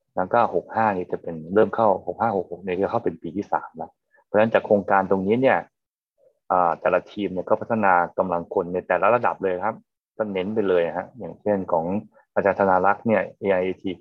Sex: male